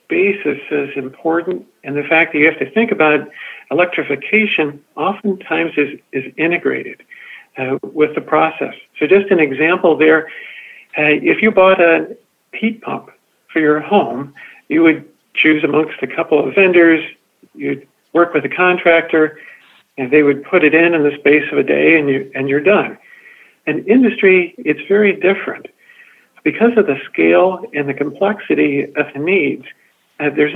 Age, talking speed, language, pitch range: 50-69, 165 wpm, English, 150-205 Hz